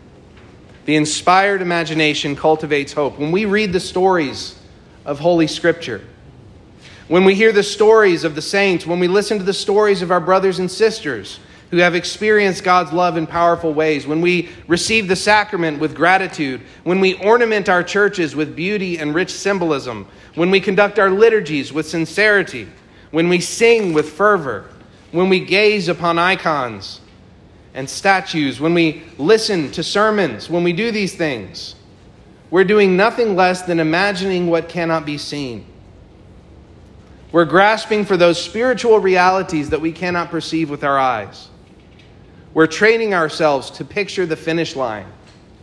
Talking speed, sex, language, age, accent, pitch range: 155 wpm, male, English, 40-59, American, 145-190 Hz